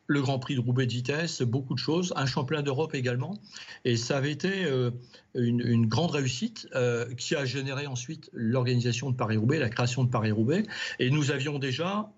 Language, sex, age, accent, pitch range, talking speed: French, male, 50-69, French, 120-145 Hz, 190 wpm